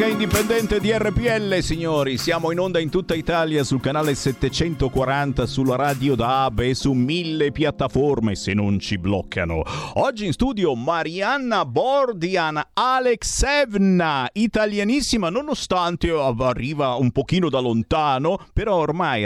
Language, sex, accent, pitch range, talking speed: Italian, male, native, 110-180 Hz, 120 wpm